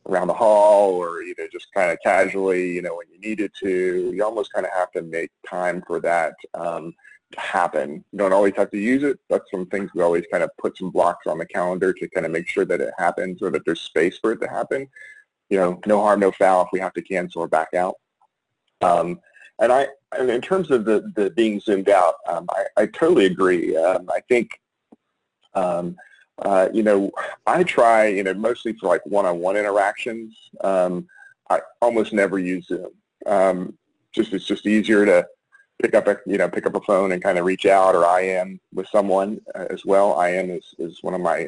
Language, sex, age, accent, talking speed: English, male, 30-49, American, 215 wpm